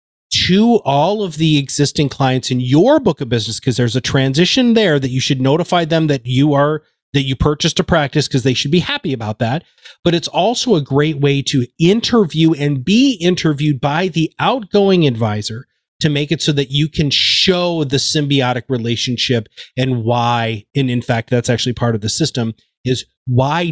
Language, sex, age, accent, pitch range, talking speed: English, male, 30-49, American, 125-165 Hz, 190 wpm